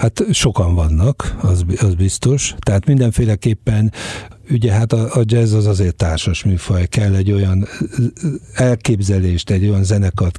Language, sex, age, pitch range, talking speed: Hungarian, male, 60-79, 95-115 Hz, 140 wpm